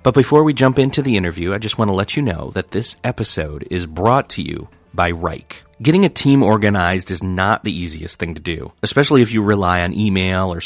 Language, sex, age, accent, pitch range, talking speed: English, male, 30-49, American, 90-115 Hz, 230 wpm